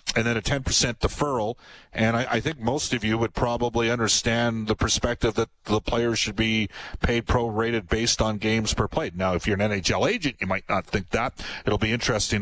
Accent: American